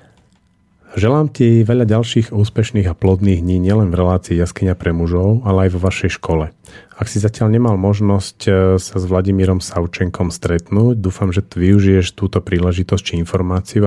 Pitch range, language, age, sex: 90-110 Hz, Slovak, 30-49, male